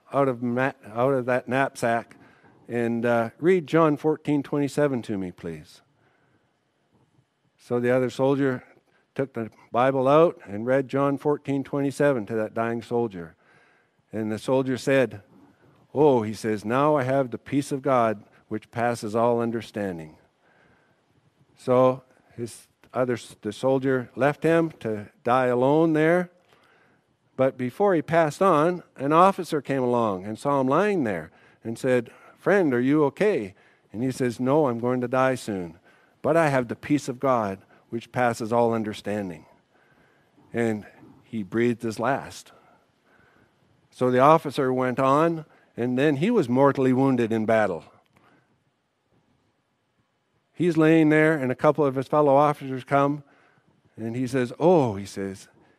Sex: male